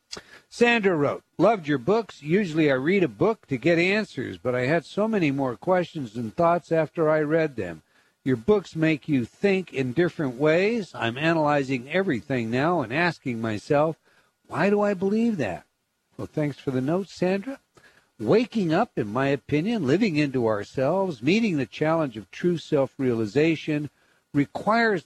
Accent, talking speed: American, 160 wpm